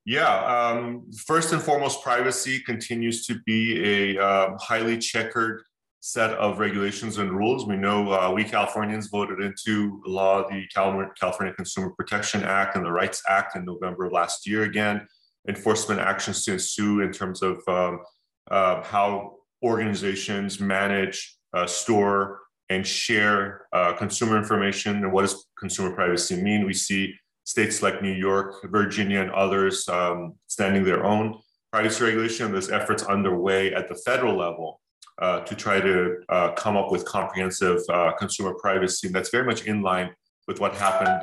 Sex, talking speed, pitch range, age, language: male, 160 wpm, 95-105 Hz, 30-49, English